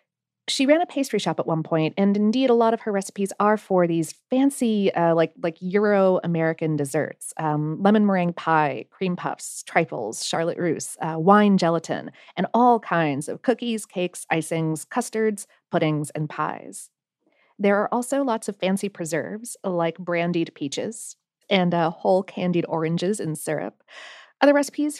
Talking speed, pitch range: 160 wpm, 170-235 Hz